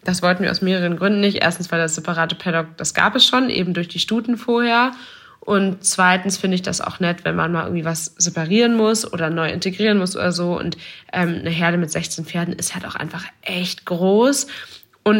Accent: German